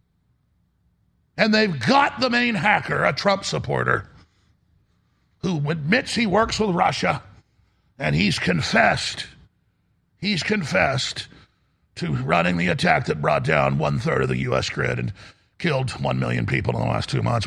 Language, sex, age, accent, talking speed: English, male, 50-69, American, 145 wpm